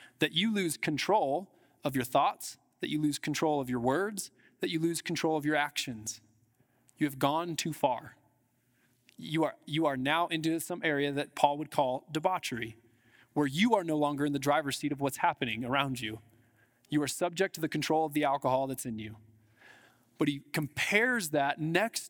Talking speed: 185 wpm